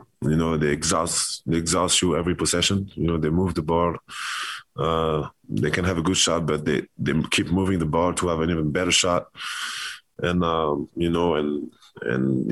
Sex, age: male, 20-39